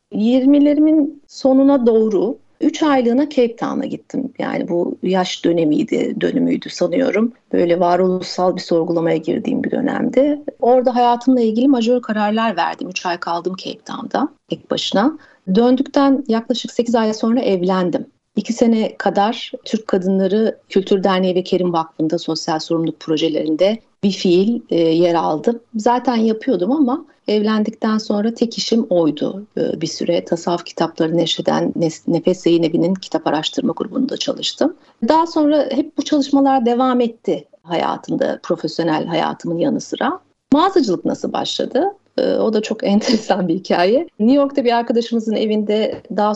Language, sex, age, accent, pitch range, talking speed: Turkish, female, 40-59, native, 195-270 Hz, 135 wpm